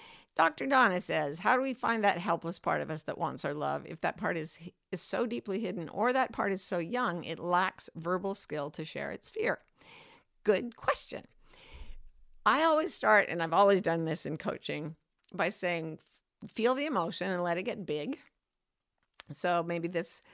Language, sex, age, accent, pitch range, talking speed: English, female, 50-69, American, 160-220 Hz, 185 wpm